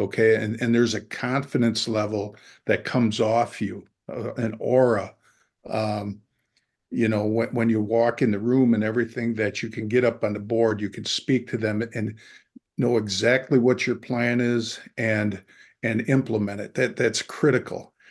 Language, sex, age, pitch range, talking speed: English, male, 50-69, 110-125 Hz, 170 wpm